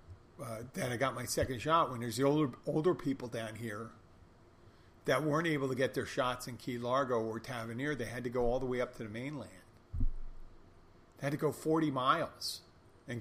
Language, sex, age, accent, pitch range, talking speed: English, male, 40-59, American, 95-125 Hz, 205 wpm